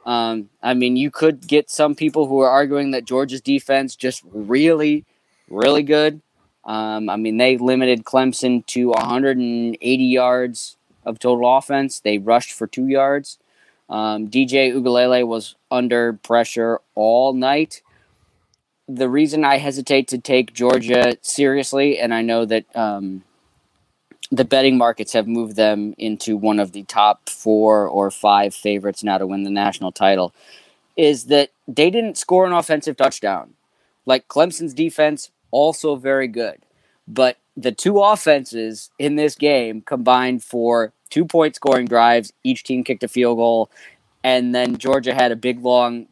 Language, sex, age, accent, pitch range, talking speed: English, male, 20-39, American, 115-135 Hz, 150 wpm